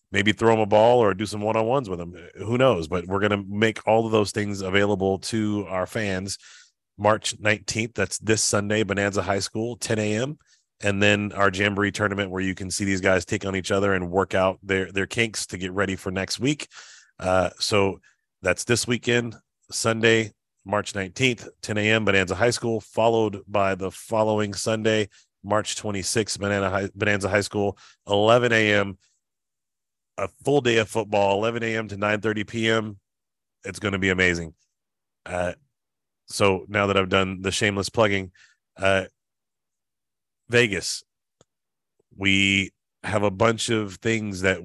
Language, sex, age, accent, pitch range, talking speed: English, male, 30-49, American, 95-110 Hz, 165 wpm